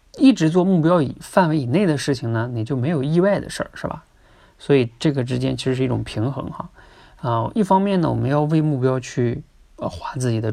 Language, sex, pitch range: Chinese, male, 115-145 Hz